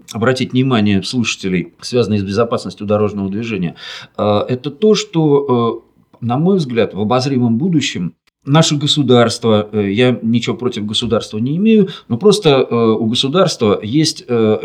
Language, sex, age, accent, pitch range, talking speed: Russian, male, 40-59, native, 115-155 Hz, 125 wpm